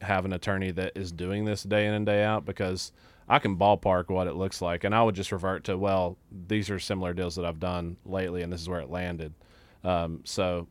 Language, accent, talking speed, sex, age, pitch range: English, American, 240 wpm, male, 30-49, 90-100 Hz